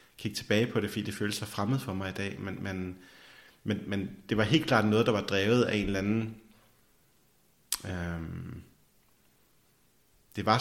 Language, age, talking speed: Danish, 30-49, 180 wpm